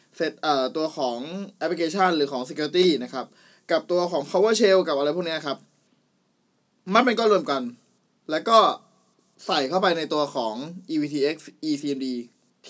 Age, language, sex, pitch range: 20-39, Thai, male, 145-190 Hz